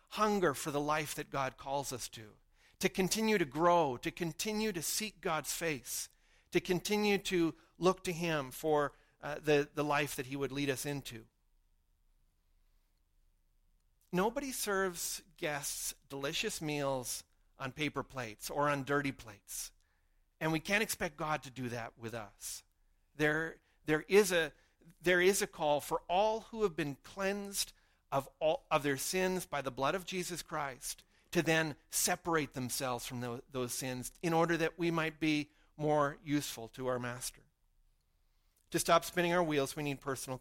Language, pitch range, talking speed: English, 130-185 Hz, 160 wpm